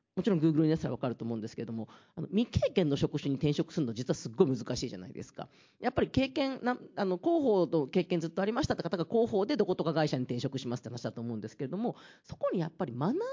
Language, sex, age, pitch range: Japanese, female, 40-59, 130-210 Hz